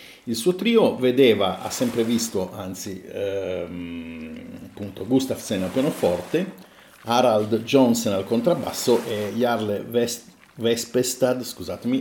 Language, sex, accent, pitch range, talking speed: Italian, male, native, 100-125 Hz, 100 wpm